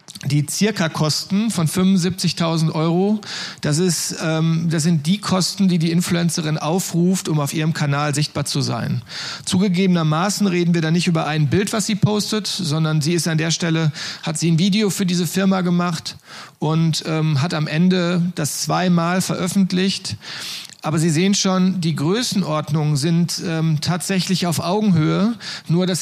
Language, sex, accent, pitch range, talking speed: German, male, German, 160-190 Hz, 155 wpm